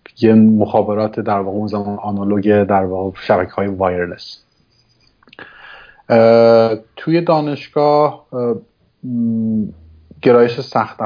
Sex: male